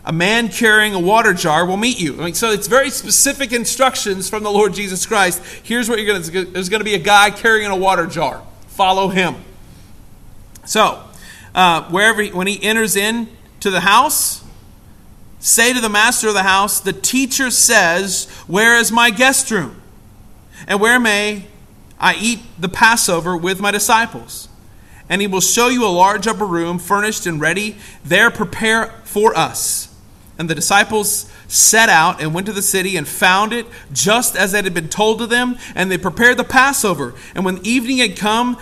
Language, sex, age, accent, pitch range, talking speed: English, male, 40-59, American, 175-230 Hz, 190 wpm